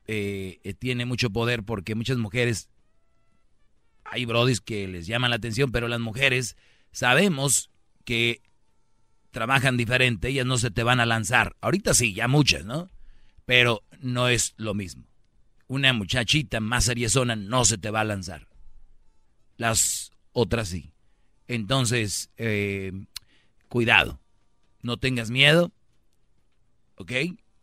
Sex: male